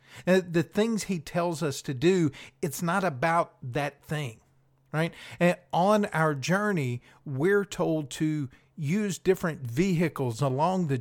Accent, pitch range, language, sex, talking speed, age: American, 145-185 Hz, English, male, 140 wpm, 50-69